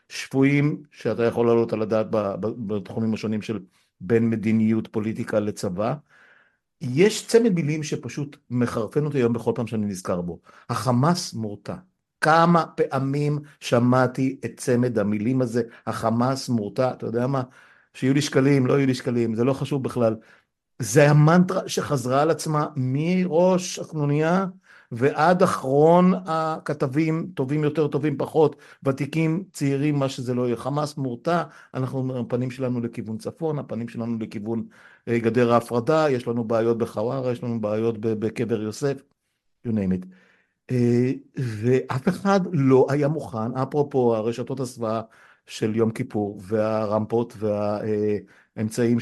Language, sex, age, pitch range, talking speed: Hebrew, male, 50-69, 110-145 Hz, 130 wpm